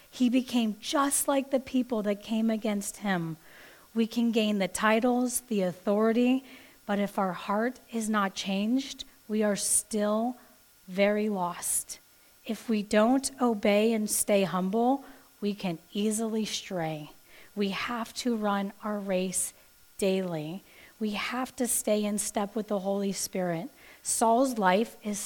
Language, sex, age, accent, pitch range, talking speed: English, female, 40-59, American, 195-240 Hz, 145 wpm